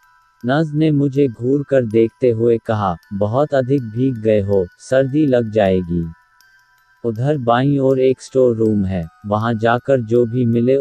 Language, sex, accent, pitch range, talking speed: Hindi, male, native, 110-135 Hz, 155 wpm